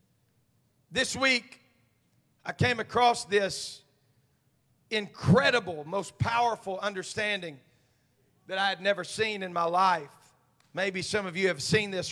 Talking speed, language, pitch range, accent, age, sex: 125 wpm, English, 150-225 Hz, American, 40-59, male